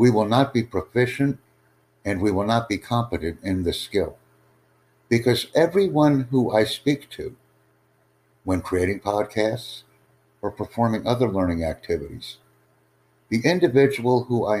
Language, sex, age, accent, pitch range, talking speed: English, male, 60-79, American, 95-130 Hz, 130 wpm